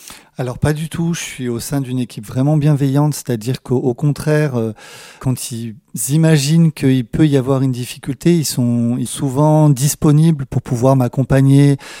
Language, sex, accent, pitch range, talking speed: French, male, French, 130-150 Hz, 165 wpm